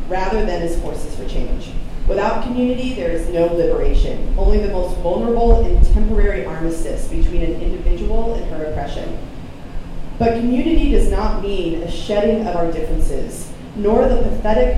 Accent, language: American, English